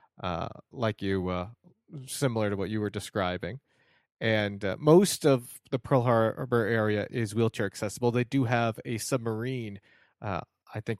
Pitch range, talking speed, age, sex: 100-120 Hz, 160 wpm, 30-49, male